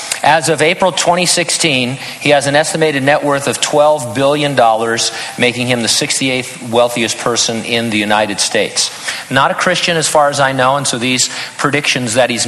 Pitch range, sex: 120-150 Hz, male